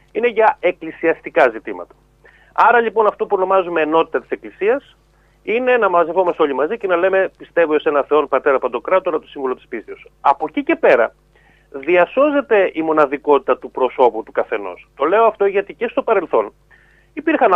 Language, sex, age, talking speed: Greek, male, 30-49, 170 wpm